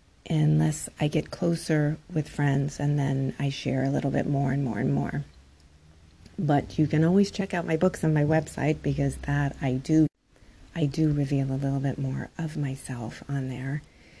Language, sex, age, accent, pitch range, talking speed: English, female, 40-59, American, 140-165 Hz, 185 wpm